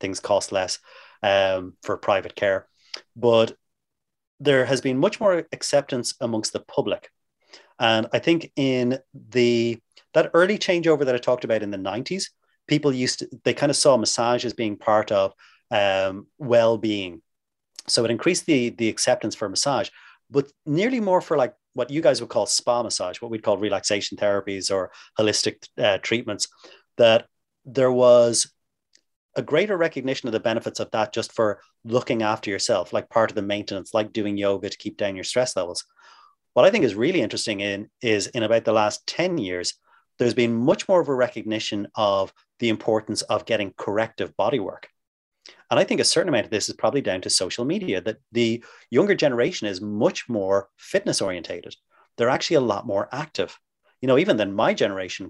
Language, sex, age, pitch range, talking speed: English, male, 30-49, 105-130 Hz, 185 wpm